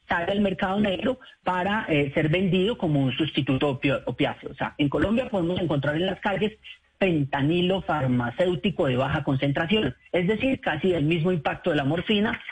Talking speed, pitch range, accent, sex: 175 wpm, 145-190 Hz, Colombian, male